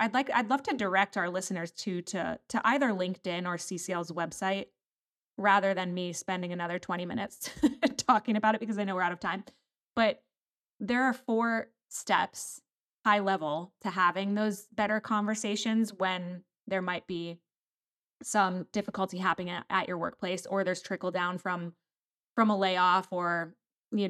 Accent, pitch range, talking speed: American, 170-200 Hz, 160 wpm